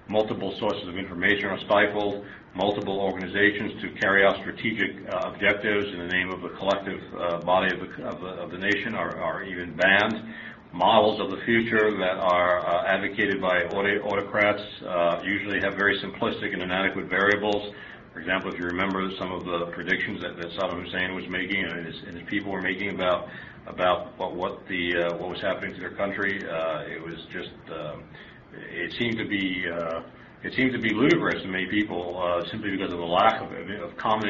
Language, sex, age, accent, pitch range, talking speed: English, male, 40-59, American, 90-105 Hz, 195 wpm